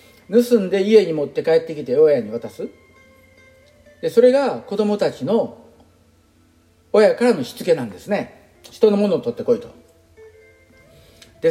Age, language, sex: 50-69, Japanese, male